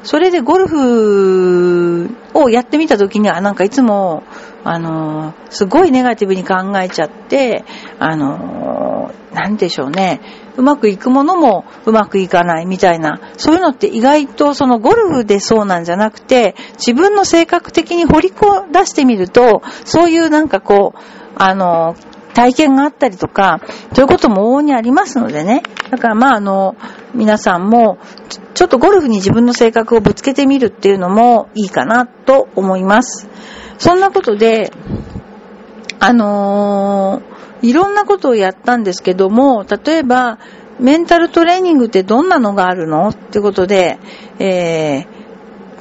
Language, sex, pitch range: Japanese, female, 190-265 Hz